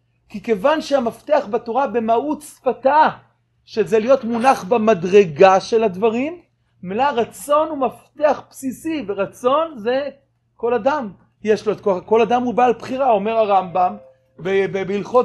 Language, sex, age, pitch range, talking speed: Hebrew, male, 30-49, 195-250 Hz, 120 wpm